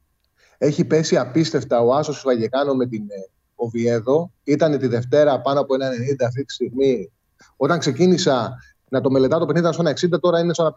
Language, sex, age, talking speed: Greek, male, 30-49, 190 wpm